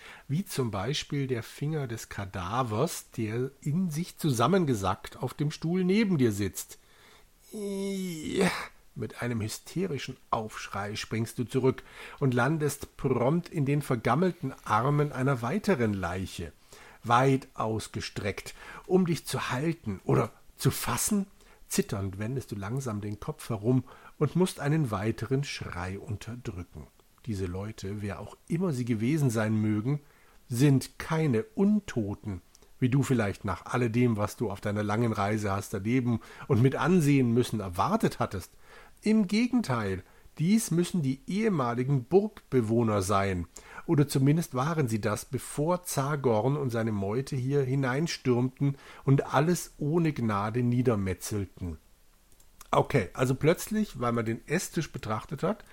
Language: German